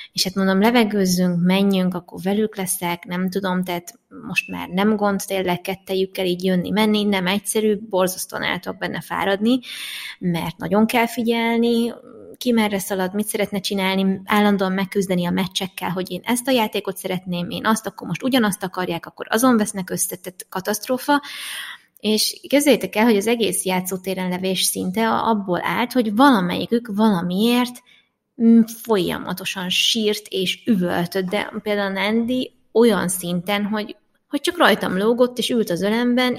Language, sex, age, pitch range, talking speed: Hungarian, female, 20-39, 185-225 Hz, 145 wpm